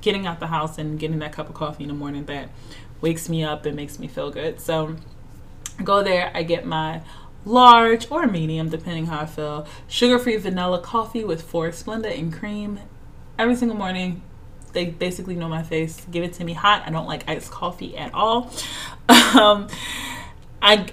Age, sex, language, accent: 20-39, female, English, American